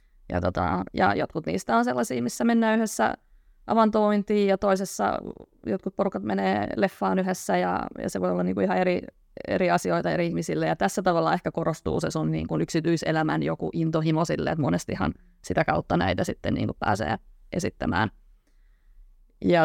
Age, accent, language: 20-39, native, Finnish